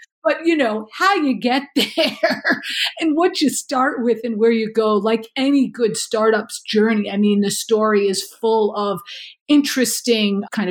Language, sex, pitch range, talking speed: English, female, 215-265 Hz, 170 wpm